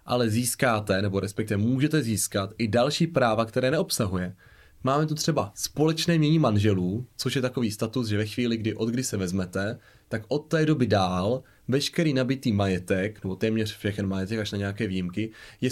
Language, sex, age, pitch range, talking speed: Czech, male, 20-39, 105-135 Hz, 170 wpm